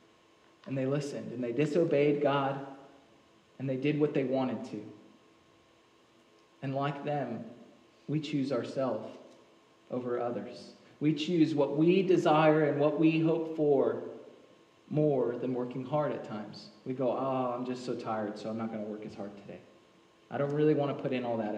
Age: 20-39